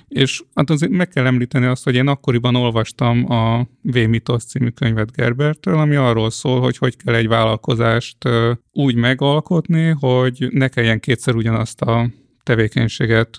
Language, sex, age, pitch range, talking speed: Hungarian, male, 30-49, 115-135 Hz, 145 wpm